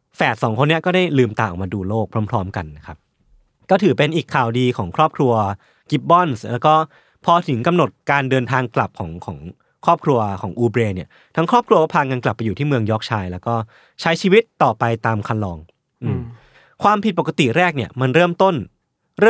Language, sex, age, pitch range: Thai, male, 20-39, 115-165 Hz